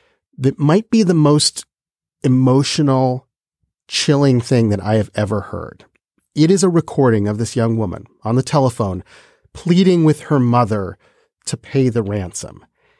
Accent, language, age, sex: American, English, 40-59, male